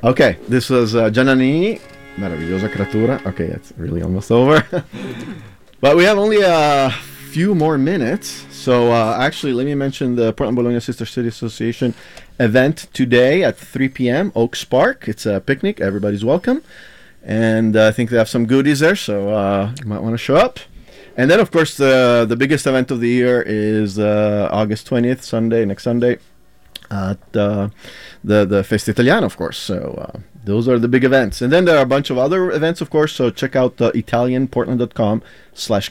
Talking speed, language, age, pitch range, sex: 185 wpm, English, 30-49, 110-140 Hz, male